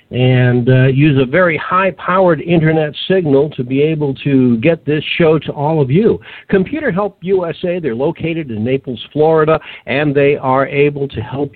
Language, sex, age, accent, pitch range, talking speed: English, male, 60-79, American, 125-165 Hz, 170 wpm